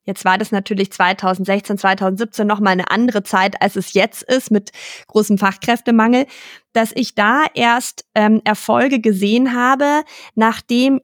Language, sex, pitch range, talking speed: German, female, 210-255 Hz, 140 wpm